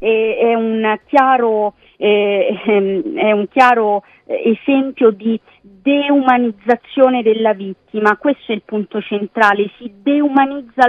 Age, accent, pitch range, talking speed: 30-49, native, 220-270 Hz, 90 wpm